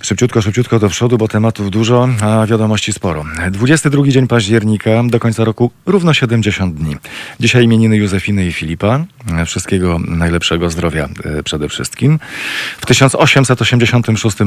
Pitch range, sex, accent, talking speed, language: 90-115 Hz, male, native, 130 wpm, Polish